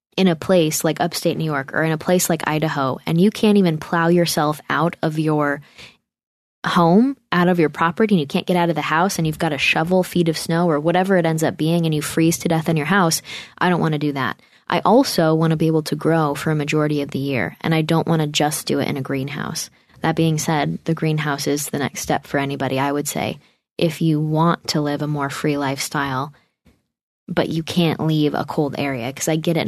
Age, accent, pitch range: 20-39, American, 150-170 Hz